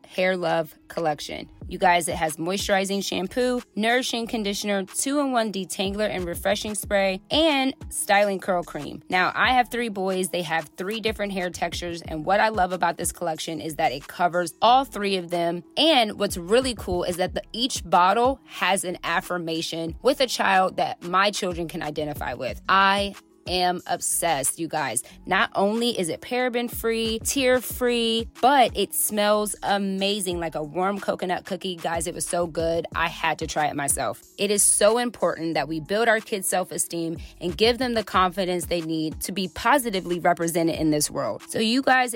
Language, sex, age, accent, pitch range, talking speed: English, female, 20-39, American, 170-215 Hz, 180 wpm